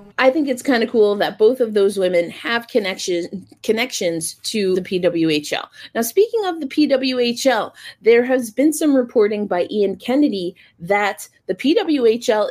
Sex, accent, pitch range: female, American, 190-260 Hz